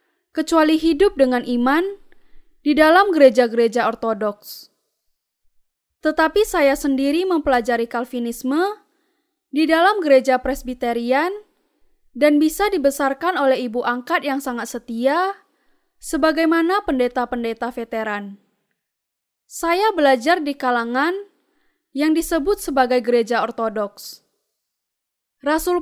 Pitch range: 250-360 Hz